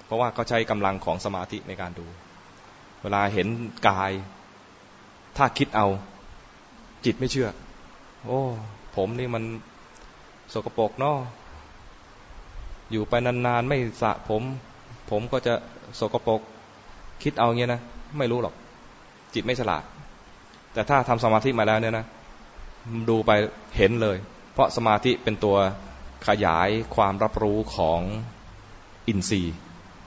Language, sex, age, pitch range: English, male, 20-39, 95-115 Hz